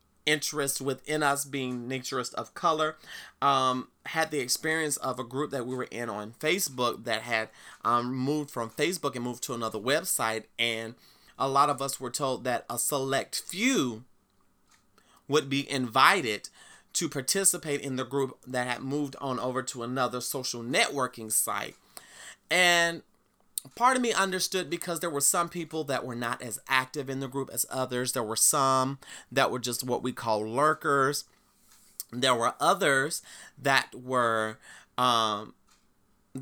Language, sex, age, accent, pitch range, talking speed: English, male, 30-49, American, 125-160 Hz, 160 wpm